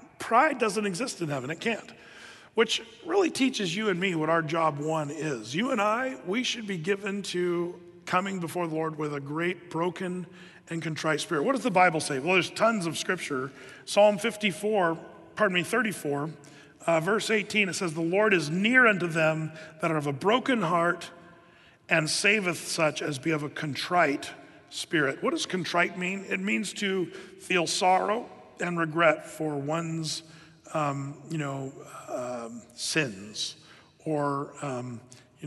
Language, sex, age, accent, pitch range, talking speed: English, male, 40-59, American, 155-185 Hz, 165 wpm